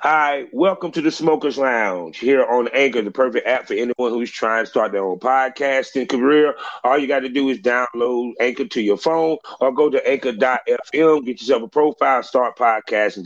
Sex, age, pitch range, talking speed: male, 30-49, 130-200 Hz, 195 wpm